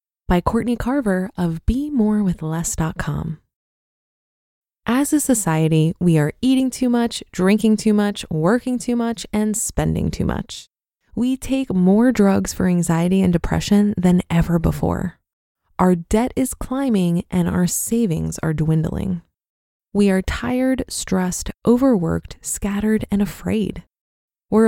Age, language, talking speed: 20-39, English, 125 wpm